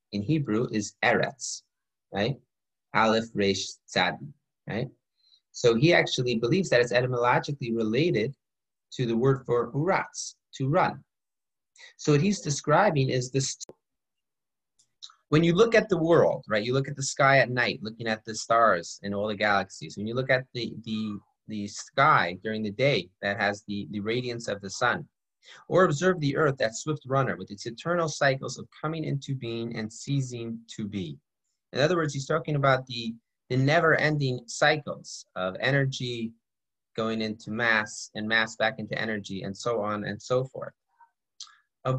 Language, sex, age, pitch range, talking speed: English, male, 30-49, 110-150 Hz, 165 wpm